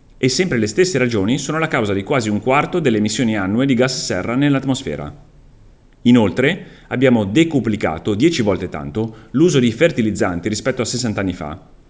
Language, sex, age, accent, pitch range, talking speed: Italian, male, 30-49, native, 95-130 Hz, 165 wpm